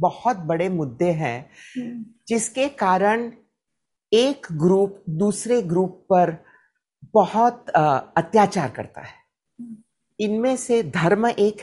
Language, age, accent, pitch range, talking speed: Hindi, 50-69, native, 180-235 Hz, 105 wpm